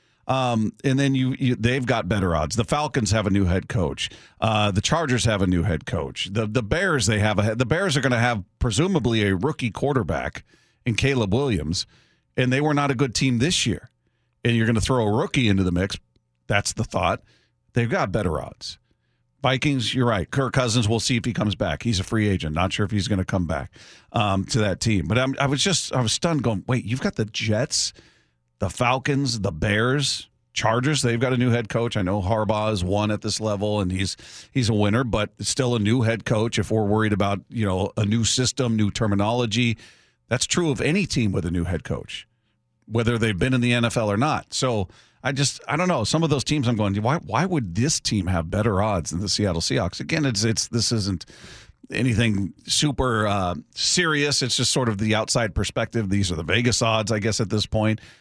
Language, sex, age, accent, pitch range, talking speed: English, male, 40-59, American, 105-130 Hz, 225 wpm